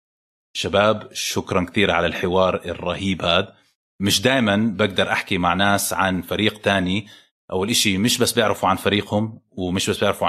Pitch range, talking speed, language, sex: 95-120 Hz, 150 wpm, Arabic, male